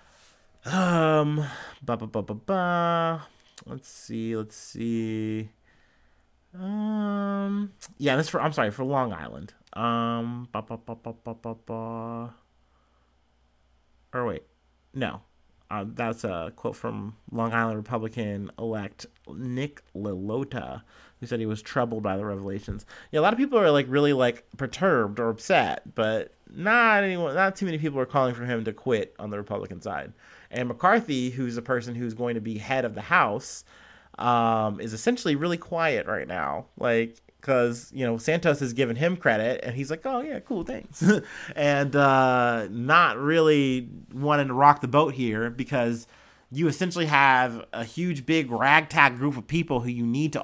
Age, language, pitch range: 30-49, English, 115-150 Hz